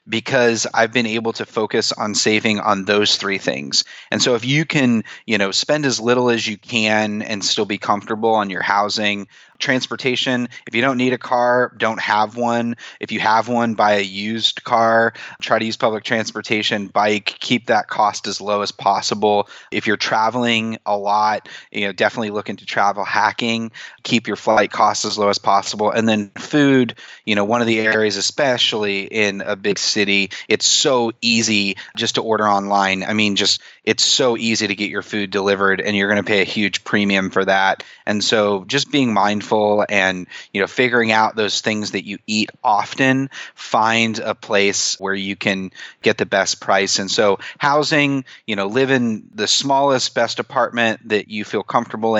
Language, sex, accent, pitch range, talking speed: English, male, American, 100-115 Hz, 190 wpm